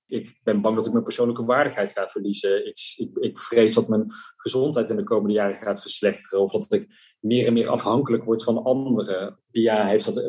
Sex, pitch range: male, 105-125 Hz